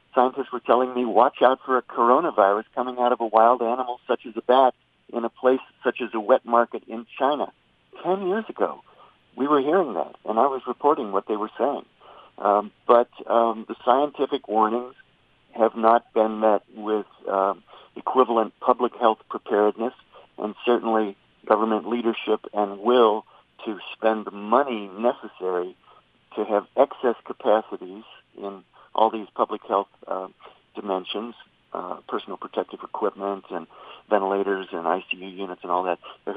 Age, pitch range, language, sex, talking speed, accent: 50-69, 105-120 Hz, English, male, 155 wpm, American